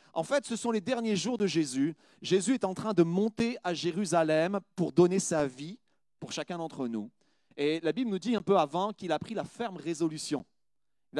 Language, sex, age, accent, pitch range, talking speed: French, male, 40-59, French, 190-245 Hz, 215 wpm